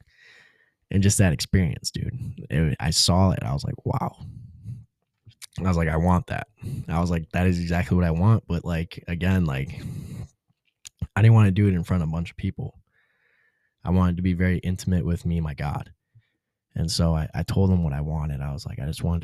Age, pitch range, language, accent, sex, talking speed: 10-29, 85-105 Hz, English, American, male, 225 wpm